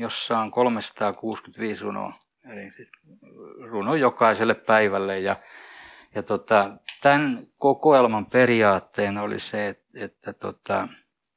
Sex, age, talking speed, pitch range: male, 60-79, 95 wpm, 105-125 Hz